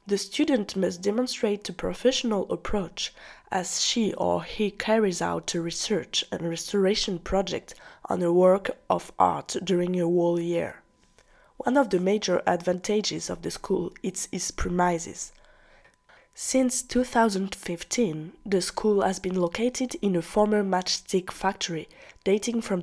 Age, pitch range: 20-39, 175-215 Hz